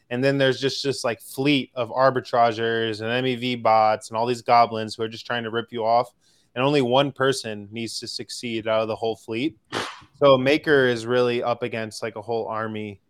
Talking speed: 210 wpm